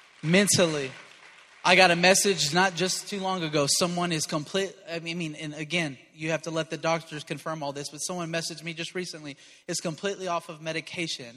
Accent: American